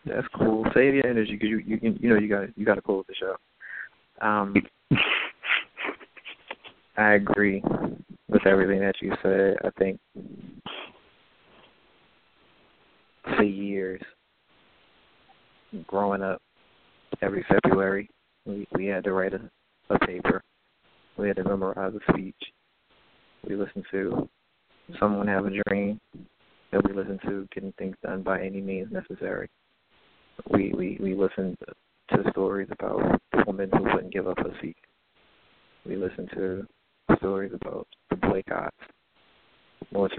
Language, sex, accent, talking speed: English, male, American, 130 wpm